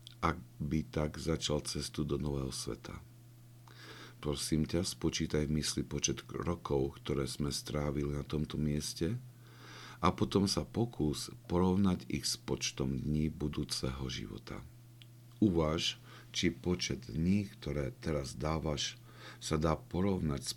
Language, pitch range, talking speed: Slovak, 75-105 Hz, 125 wpm